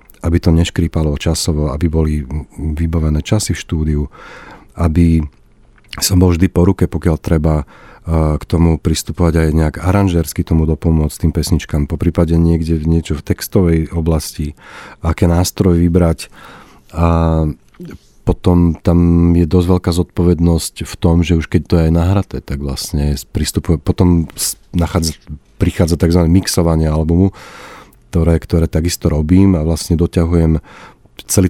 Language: Slovak